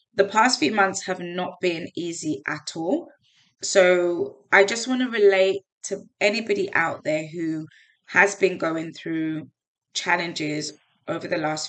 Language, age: English, 20-39